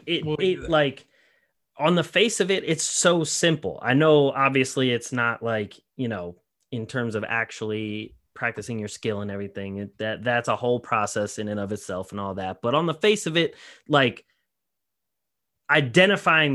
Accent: American